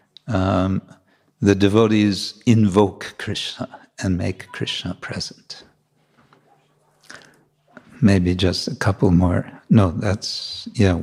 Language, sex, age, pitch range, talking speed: English, male, 60-79, 95-125 Hz, 95 wpm